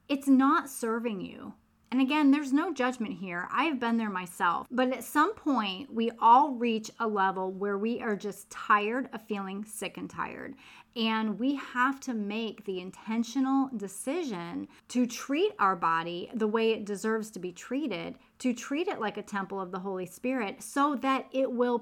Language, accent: English, American